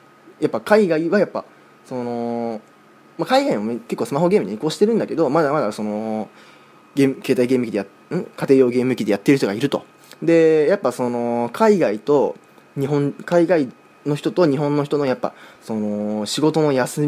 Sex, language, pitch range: male, Japanese, 110-155 Hz